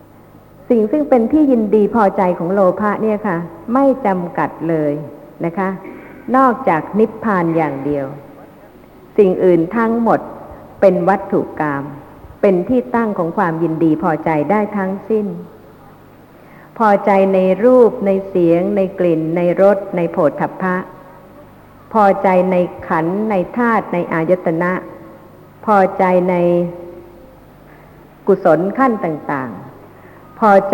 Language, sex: Thai, female